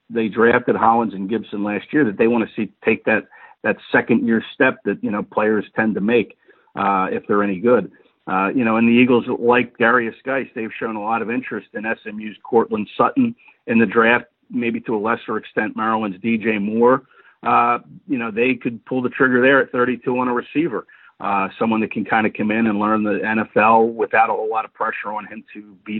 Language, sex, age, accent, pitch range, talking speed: English, male, 50-69, American, 105-125 Hz, 220 wpm